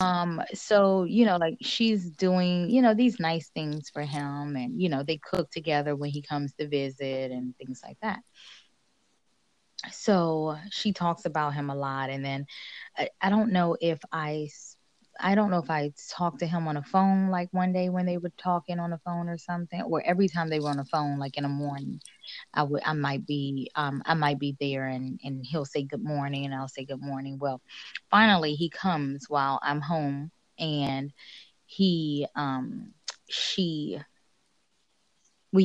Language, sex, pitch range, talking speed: English, female, 145-185 Hz, 190 wpm